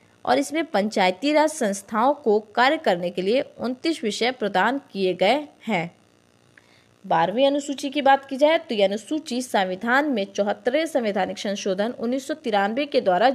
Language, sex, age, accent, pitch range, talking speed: Hindi, female, 20-39, native, 190-275 Hz, 150 wpm